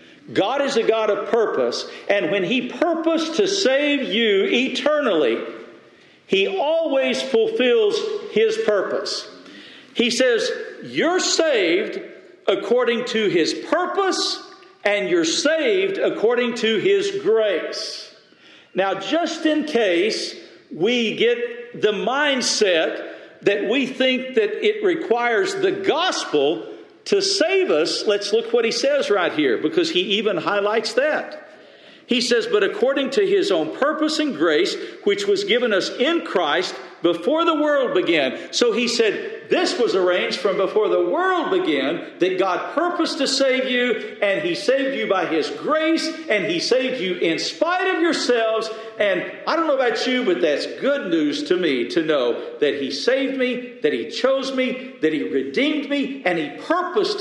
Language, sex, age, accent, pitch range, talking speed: English, male, 50-69, American, 245-395 Hz, 155 wpm